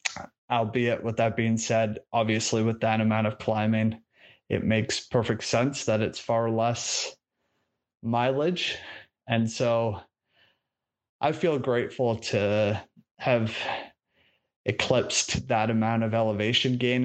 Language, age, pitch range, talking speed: English, 30-49, 110-125 Hz, 115 wpm